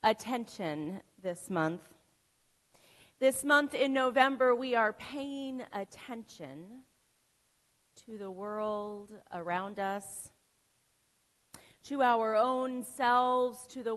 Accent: American